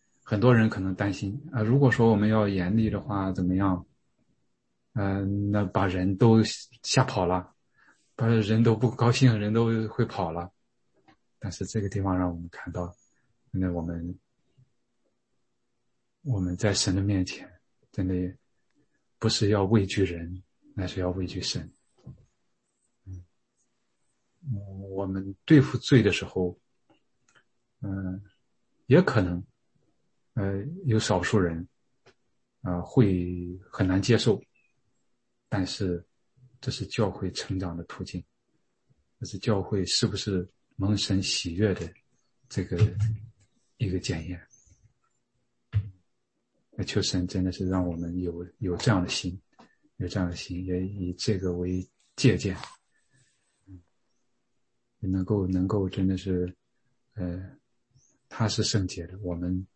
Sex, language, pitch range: male, English, 90-110 Hz